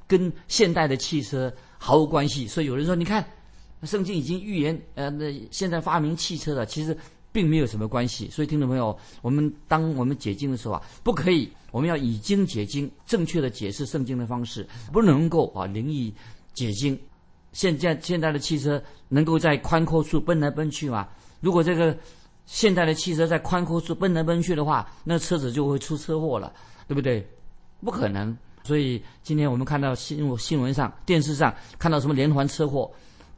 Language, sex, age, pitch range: Chinese, male, 50-69, 125-165 Hz